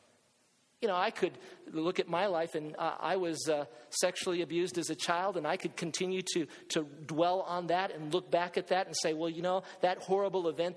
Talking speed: 225 wpm